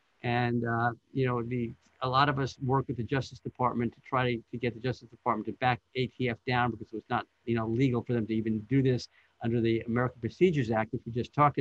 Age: 50-69